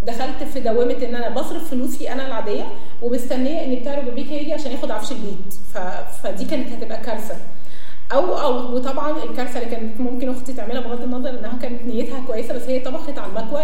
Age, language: 20-39, Arabic